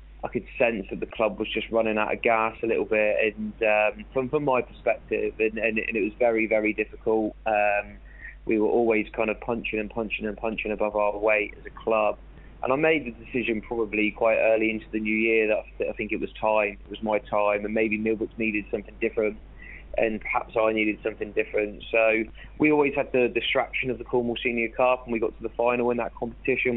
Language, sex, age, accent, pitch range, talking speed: English, male, 20-39, British, 110-125 Hz, 235 wpm